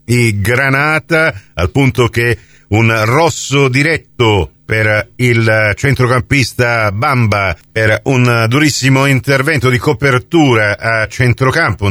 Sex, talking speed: male, 95 wpm